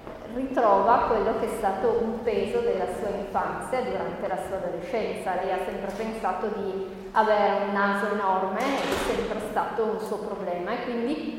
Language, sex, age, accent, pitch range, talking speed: Italian, female, 20-39, native, 200-250 Hz, 165 wpm